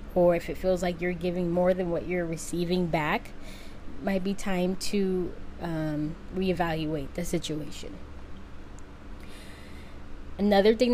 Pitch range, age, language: 170-200 Hz, 10-29, English